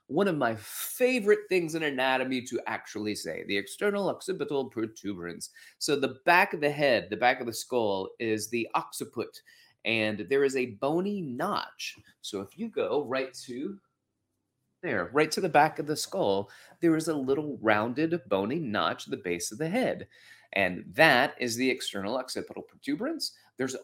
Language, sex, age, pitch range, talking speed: English, male, 30-49, 115-185 Hz, 175 wpm